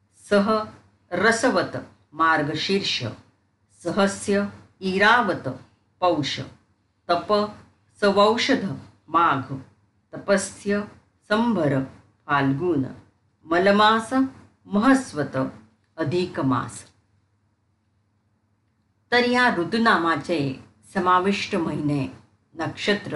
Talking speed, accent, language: 55 wpm, native, Marathi